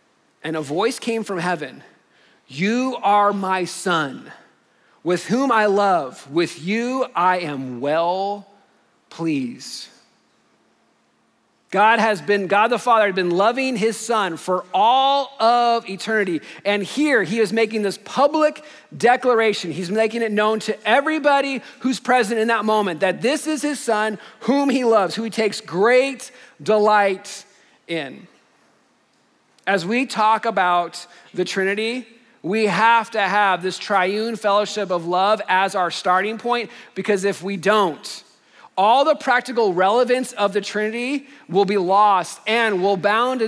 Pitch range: 185-235 Hz